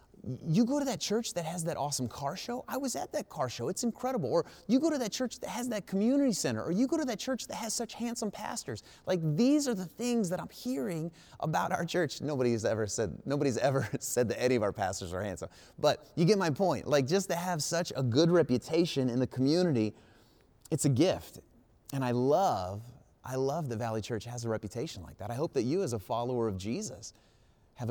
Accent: American